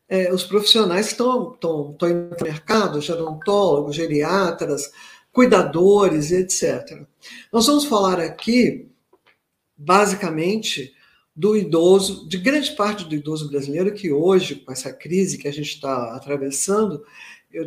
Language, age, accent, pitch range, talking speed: Portuguese, 50-69, Brazilian, 165-225 Hz, 125 wpm